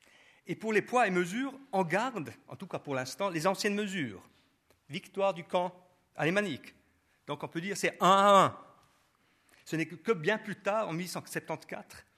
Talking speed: 180 wpm